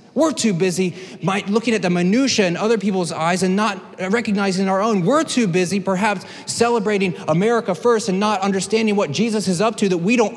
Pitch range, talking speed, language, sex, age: 190-225 Hz, 195 wpm, English, male, 30-49